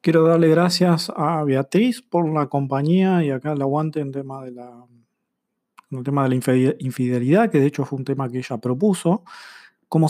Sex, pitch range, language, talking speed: male, 135-175 Hz, Spanish, 170 wpm